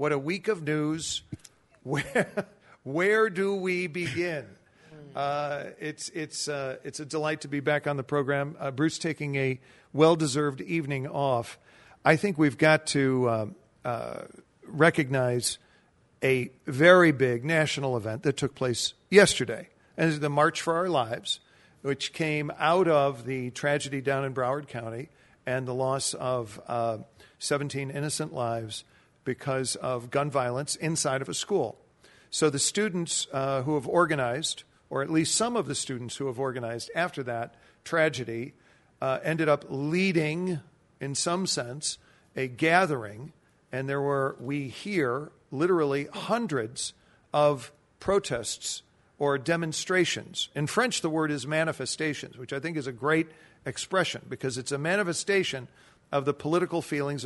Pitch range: 130-160 Hz